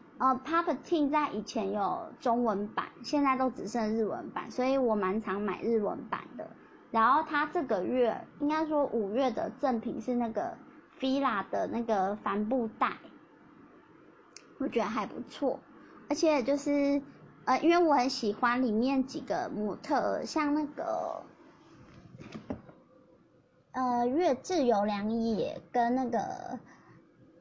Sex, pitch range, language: male, 230-290 Hz, Chinese